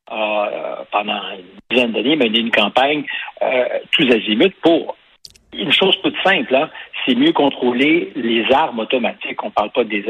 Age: 60-79